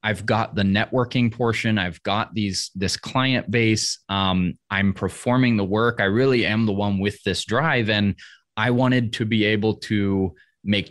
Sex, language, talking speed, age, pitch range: male, English, 175 wpm, 20-39, 95-115 Hz